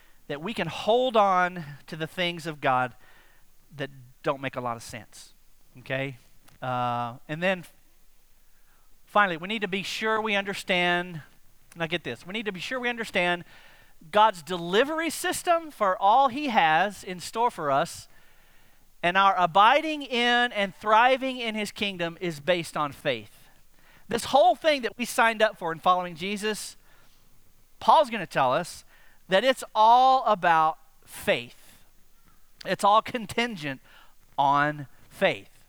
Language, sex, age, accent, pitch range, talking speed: English, male, 40-59, American, 165-240 Hz, 150 wpm